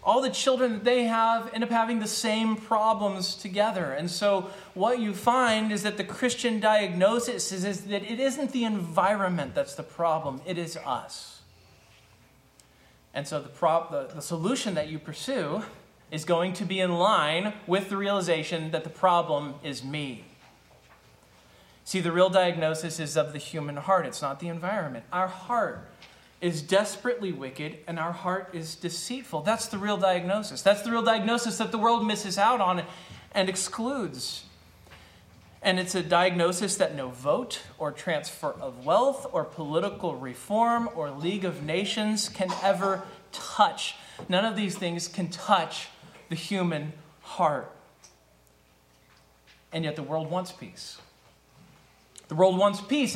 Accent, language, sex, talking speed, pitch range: American, English, male, 155 wpm, 160-215 Hz